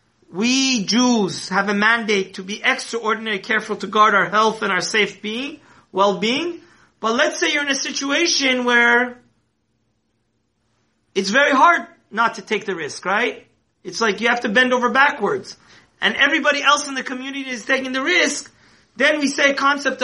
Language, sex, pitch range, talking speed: English, male, 200-255 Hz, 175 wpm